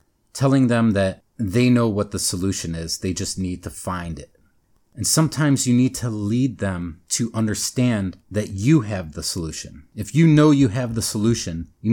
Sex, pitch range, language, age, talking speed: male, 95-120 Hz, English, 30-49, 185 wpm